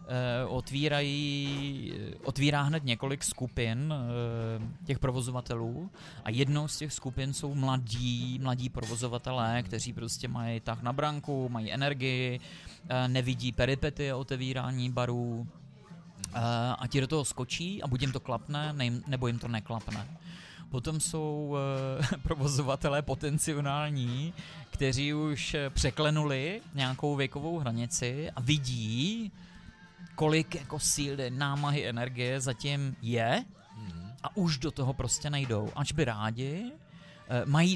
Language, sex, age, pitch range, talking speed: Czech, male, 30-49, 125-150 Hz, 115 wpm